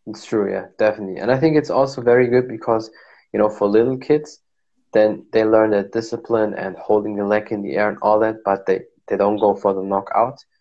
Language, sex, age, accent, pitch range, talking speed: German, male, 20-39, German, 100-115 Hz, 225 wpm